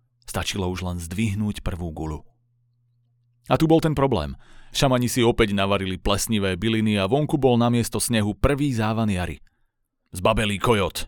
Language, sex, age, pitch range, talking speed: Slovak, male, 30-49, 100-130 Hz, 150 wpm